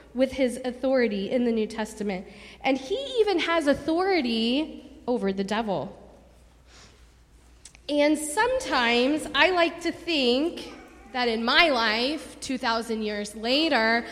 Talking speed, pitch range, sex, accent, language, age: 120 wpm, 230-305 Hz, female, American, English, 20-39